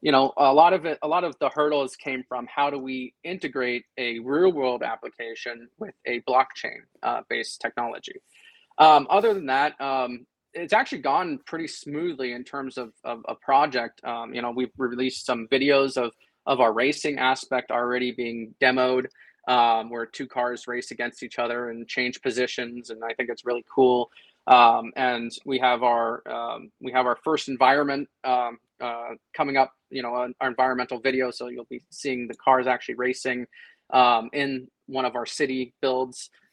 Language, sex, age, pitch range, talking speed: English, male, 20-39, 120-140 Hz, 175 wpm